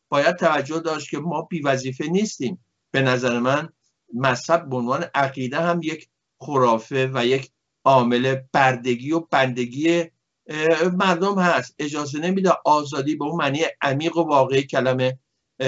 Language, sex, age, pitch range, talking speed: Persian, male, 60-79, 130-160 Hz, 135 wpm